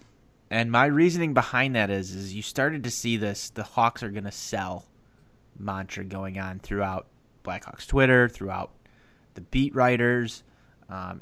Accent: American